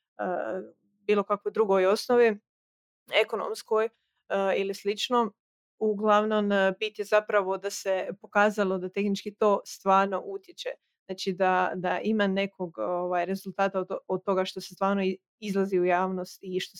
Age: 30-49